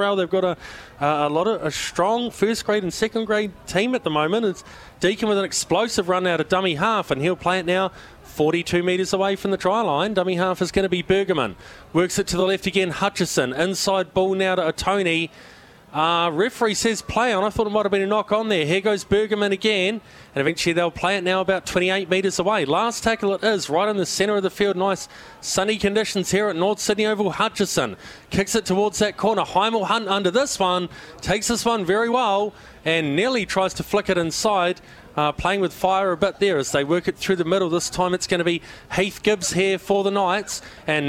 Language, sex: English, male